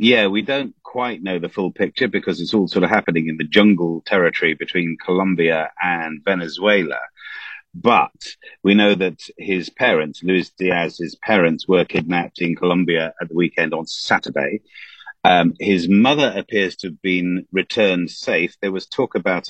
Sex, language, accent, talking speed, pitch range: male, English, British, 165 wpm, 85-105 Hz